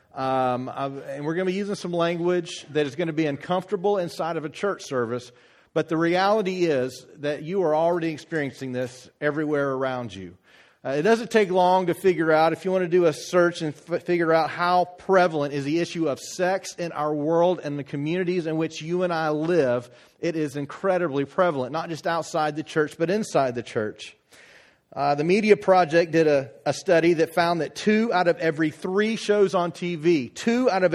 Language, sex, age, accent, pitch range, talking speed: English, male, 40-59, American, 145-180 Hz, 205 wpm